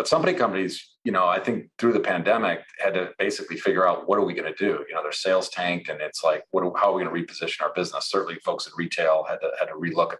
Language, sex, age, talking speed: English, male, 40-59, 290 wpm